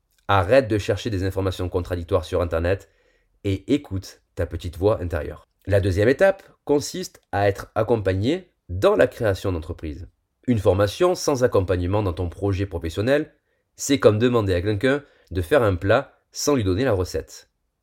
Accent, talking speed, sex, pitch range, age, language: French, 160 wpm, male, 85-125 Hz, 30-49, French